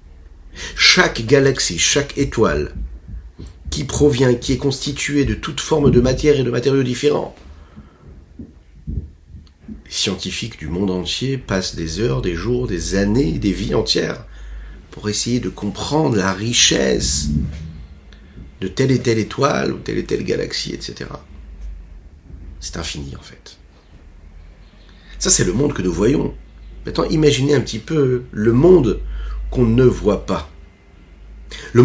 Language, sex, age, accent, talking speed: French, male, 50-69, French, 140 wpm